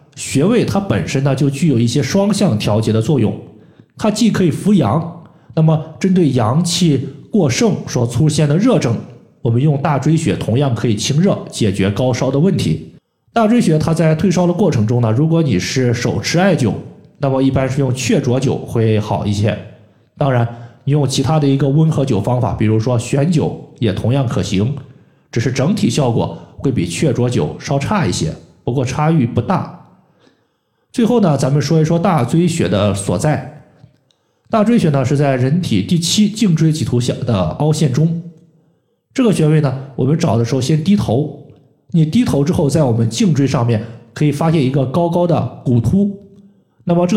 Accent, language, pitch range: native, Chinese, 125-165 Hz